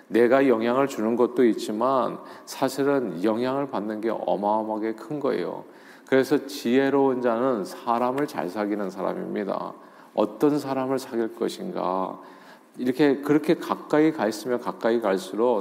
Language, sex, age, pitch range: Korean, male, 40-59, 105-140 Hz